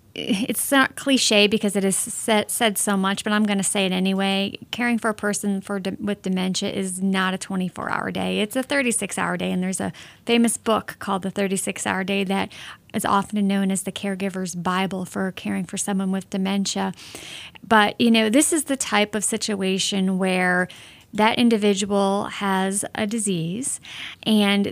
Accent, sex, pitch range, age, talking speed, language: American, female, 195-225 Hz, 30-49, 175 wpm, English